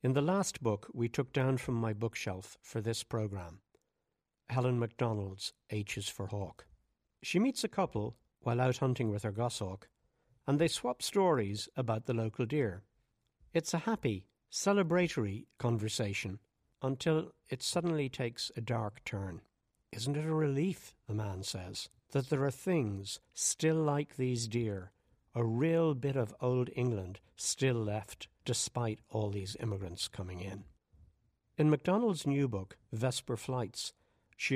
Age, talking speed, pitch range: 60-79, 150 wpm, 105-135 Hz